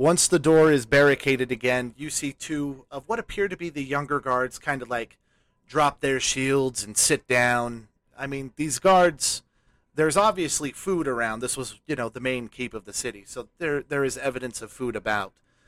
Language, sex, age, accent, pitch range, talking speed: English, male, 30-49, American, 120-145 Hz, 200 wpm